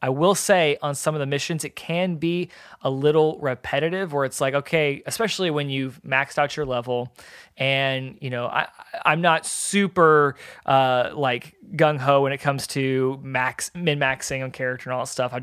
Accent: American